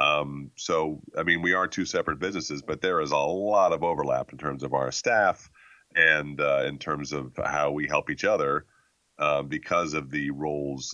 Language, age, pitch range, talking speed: English, 30-49, 65-75 Hz, 195 wpm